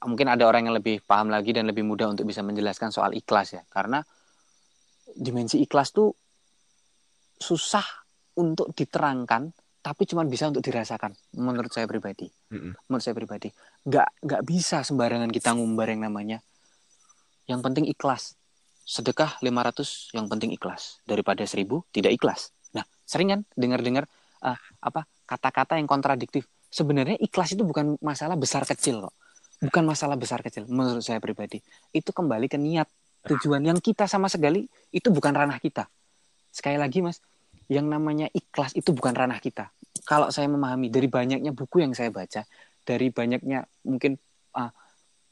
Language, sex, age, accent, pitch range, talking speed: Indonesian, male, 20-39, native, 120-155 Hz, 150 wpm